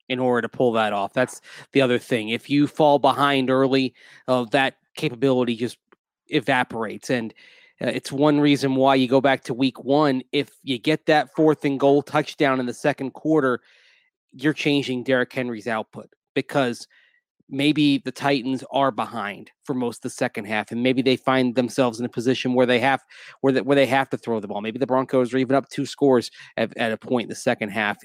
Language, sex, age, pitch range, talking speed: English, male, 30-49, 125-150 Hz, 210 wpm